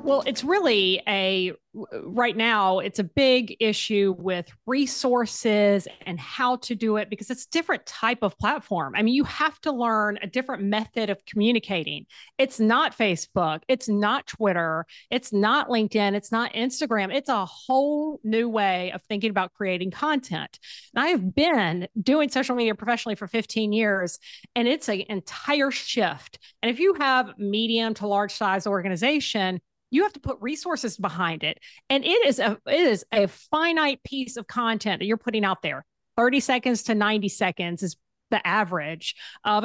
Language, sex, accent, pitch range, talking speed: English, female, American, 200-260 Hz, 175 wpm